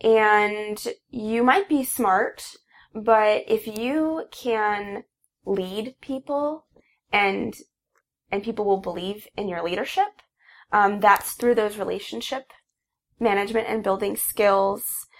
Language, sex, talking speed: English, female, 110 wpm